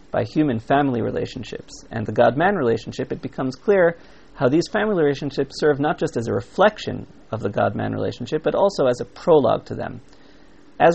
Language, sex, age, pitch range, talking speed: English, male, 40-59, 125-160 Hz, 175 wpm